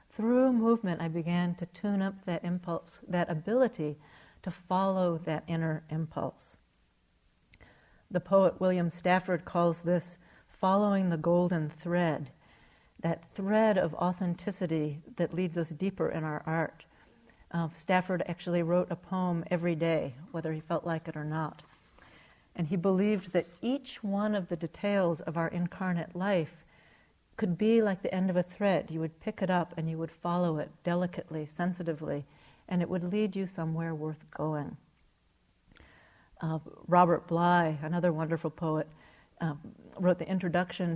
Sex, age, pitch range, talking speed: female, 50-69, 165-185 Hz, 150 wpm